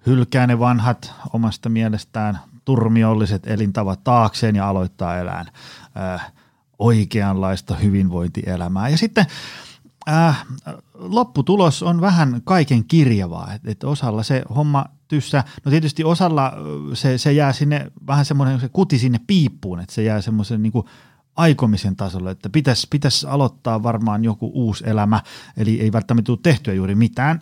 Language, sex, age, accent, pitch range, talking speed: Finnish, male, 30-49, native, 110-140 Hz, 135 wpm